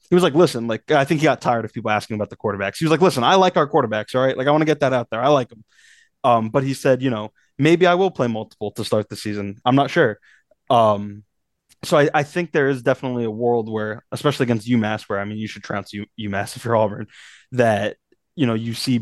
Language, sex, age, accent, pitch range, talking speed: English, male, 20-39, American, 110-130 Hz, 270 wpm